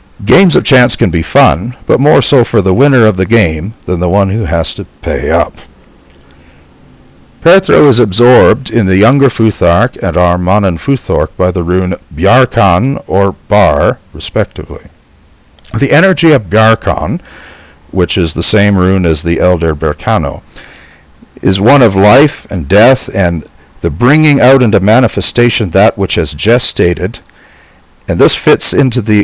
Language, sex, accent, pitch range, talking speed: English, male, American, 85-120 Hz, 150 wpm